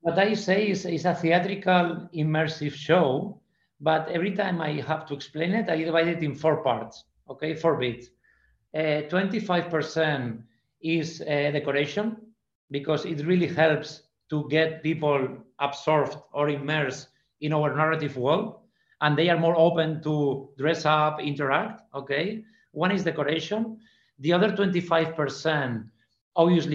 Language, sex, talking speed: English, male, 140 wpm